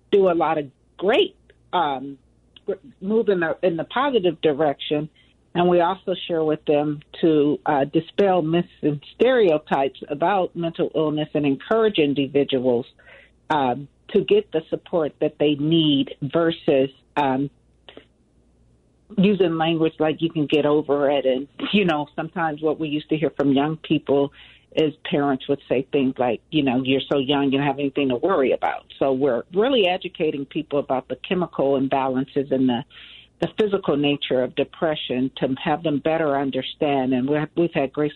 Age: 50-69